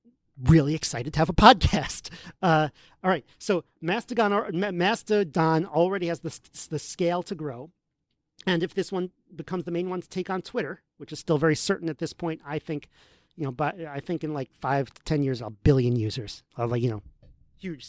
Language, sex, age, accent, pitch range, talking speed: English, male, 40-59, American, 145-175 Hz, 200 wpm